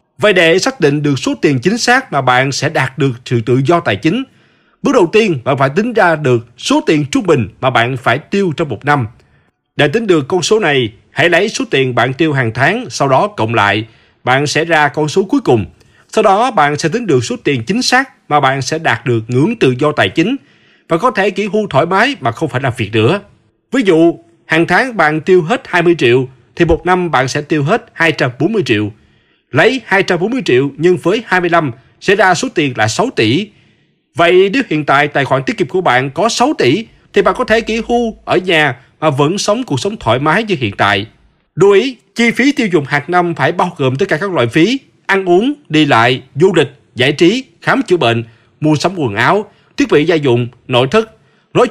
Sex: male